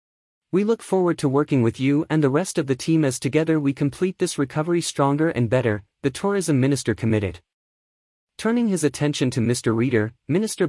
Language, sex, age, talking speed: English, male, 30-49, 185 wpm